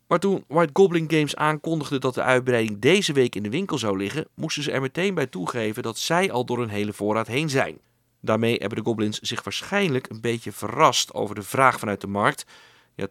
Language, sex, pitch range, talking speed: Dutch, male, 105-140 Hz, 215 wpm